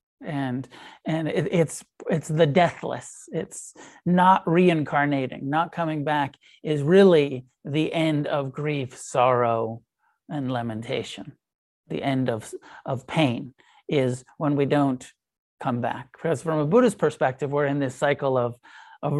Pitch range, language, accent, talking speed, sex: 135-175 Hz, English, American, 140 wpm, male